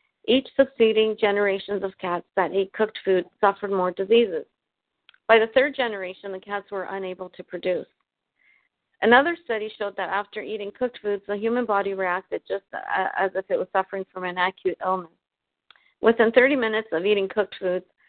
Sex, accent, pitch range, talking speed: female, American, 190-220 Hz, 170 wpm